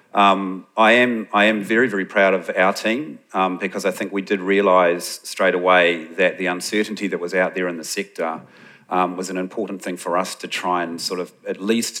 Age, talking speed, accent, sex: 40-59, 220 wpm, Australian, male